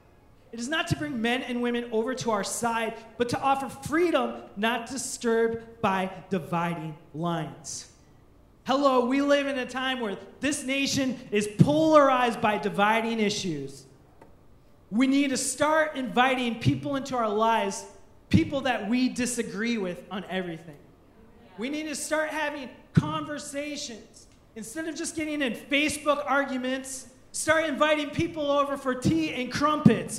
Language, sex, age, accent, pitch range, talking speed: English, male, 30-49, American, 230-305 Hz, 145 wpm